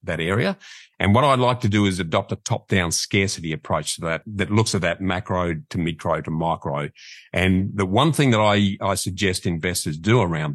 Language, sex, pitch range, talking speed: English, male, 90-115 Hz, 205 wpm